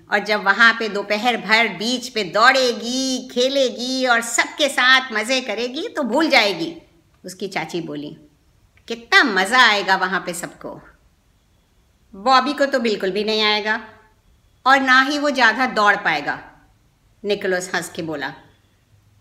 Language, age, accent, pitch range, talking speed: Hindi, 50-69, native, 180-290 Hz, 140 wpm